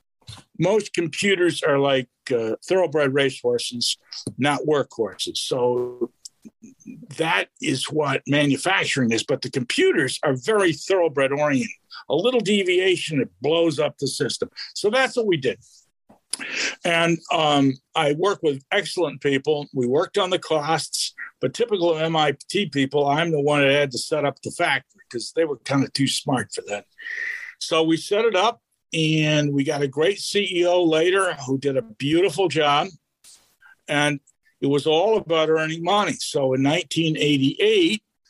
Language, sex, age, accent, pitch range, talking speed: English, male, 60-79, American, 140-180 Hz, 150 wpm